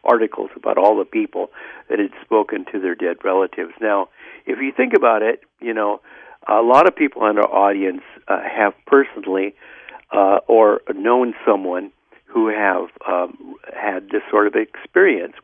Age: 60-79